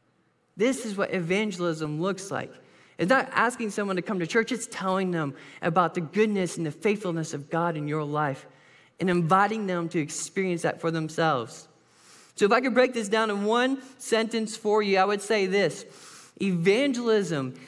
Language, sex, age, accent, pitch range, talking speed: English, male, 20-39, American, 180-225 Hz, 180 wpm